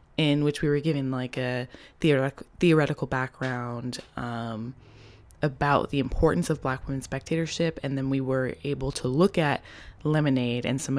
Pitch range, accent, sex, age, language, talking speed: 125-150 Hz, American, female, 20-39, English, 155 wpm